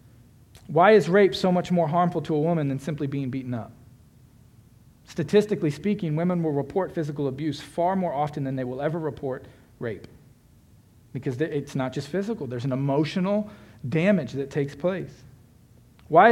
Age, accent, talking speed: 40-59, American, 160 wpm